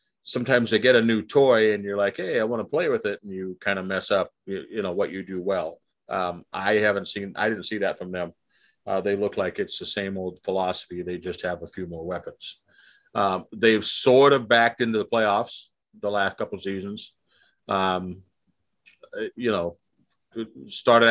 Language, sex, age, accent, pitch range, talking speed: English, male, 40-59, American, 95-120 Hz, 200 wpm